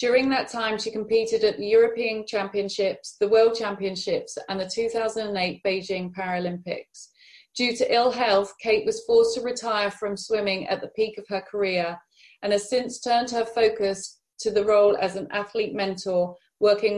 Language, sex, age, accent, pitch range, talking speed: English, female, 30-49, British, 190-230 Hz, 170 wpm